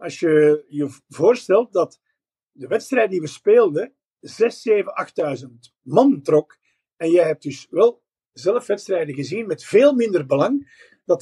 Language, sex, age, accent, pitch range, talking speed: Dutch, male, 50-69, Dutch, 165-275 Hz, 150 wpm